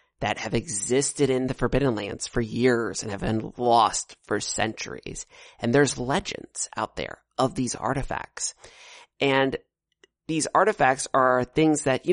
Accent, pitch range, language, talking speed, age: American, 115-140 Hz, English, 150 wpm, 30-49